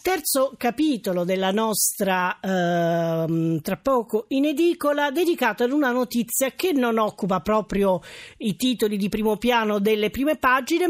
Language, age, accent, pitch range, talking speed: Italian, 40-59, native, 200-255 Hz, 140 wpm